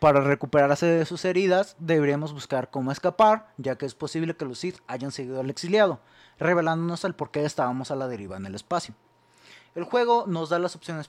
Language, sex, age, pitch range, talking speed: Spanish, male, 30-49, 135-190 Hz, 200 wpm